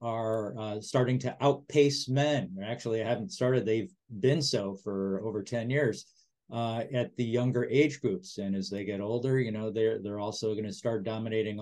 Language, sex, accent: English, male, American